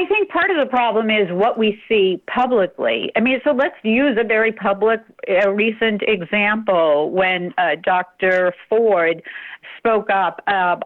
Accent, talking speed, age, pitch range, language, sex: American, 155 wpm, 50-69, 180-235 Hz, English, female